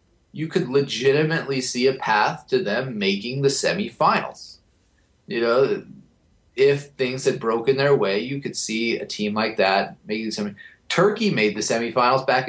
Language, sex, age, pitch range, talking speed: English, male, 30-49, 115-140 Hz, 160 wpm